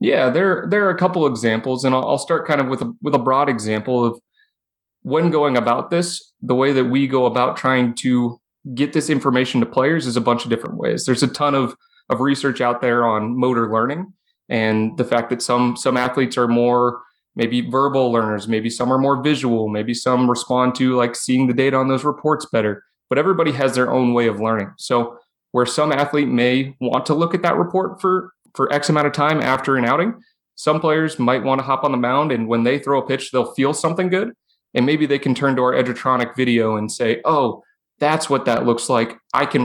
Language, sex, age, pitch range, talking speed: English, male, 30-49, 120-155 Hz, 225 wpm